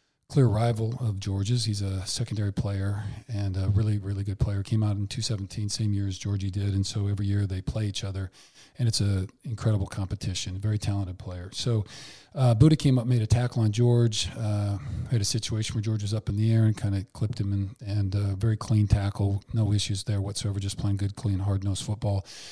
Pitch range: 100-115 Hz